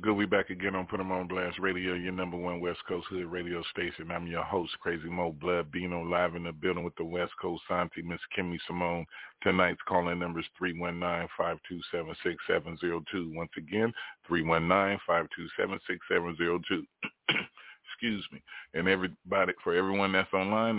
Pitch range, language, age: 85-95 Hz, English, 40-59